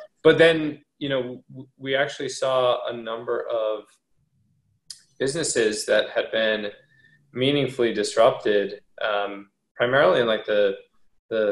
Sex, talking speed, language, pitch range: male, 115 wpm, English, 110-135 Hz